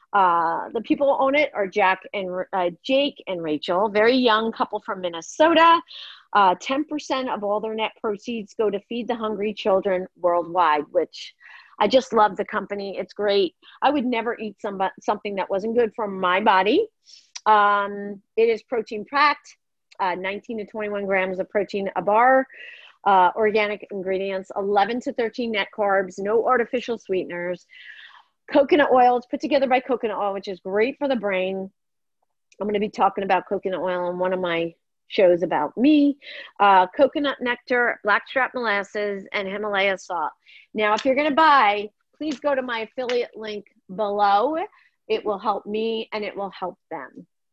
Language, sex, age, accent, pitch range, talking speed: English, female, 40-59, American, 195-245 Hz, 170 wpm